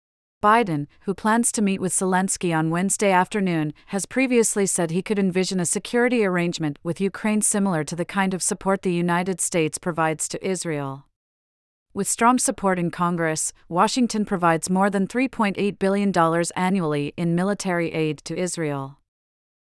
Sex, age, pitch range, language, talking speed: female, 40-59, 165-200 Hz, English, 150 wpm